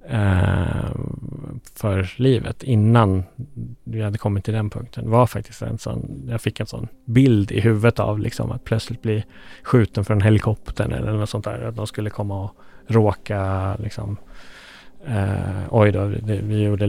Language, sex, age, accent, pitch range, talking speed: Swedish, male, 30-49, Norwegian, 100-115 Hz, 165 wpm